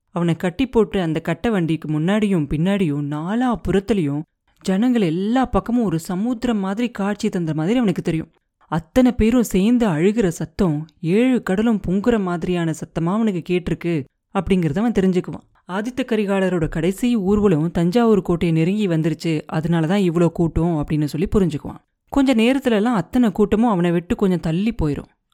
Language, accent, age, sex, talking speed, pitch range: Tamil, native, 30-49, female, 140 wpm, 160-210 Hz